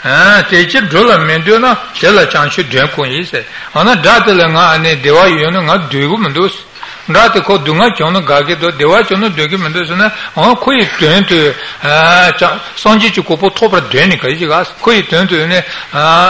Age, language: 60-79, Italian